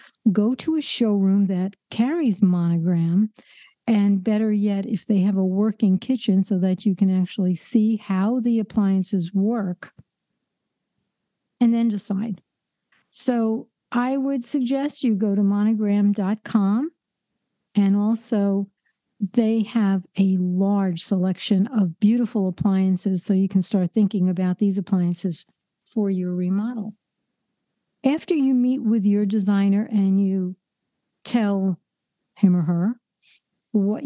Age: 60-79